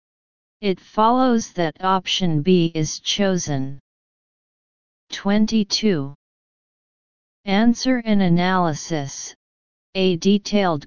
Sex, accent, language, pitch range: female, American, English, 160-195 Hz